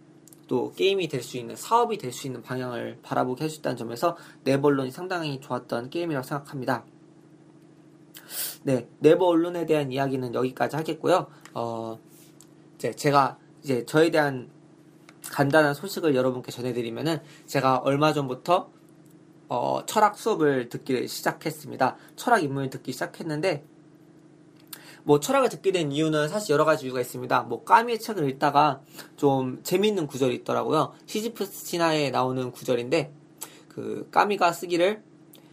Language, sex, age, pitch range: Korean, male, 20-39, 135-170 Hz